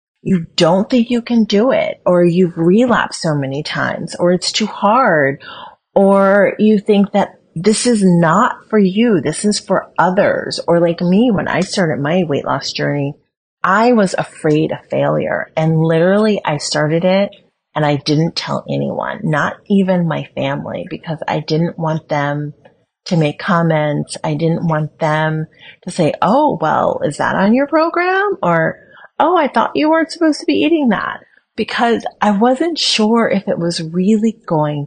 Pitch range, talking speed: 160-220 Hz, 170 wpm